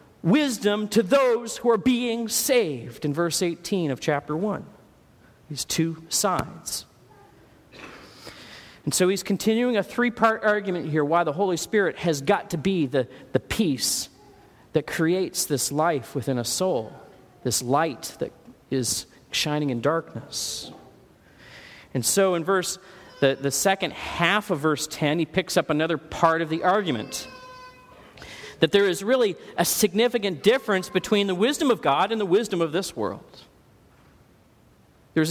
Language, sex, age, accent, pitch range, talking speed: English, male, 40-59, American, 150-200 Hz, 150 wpm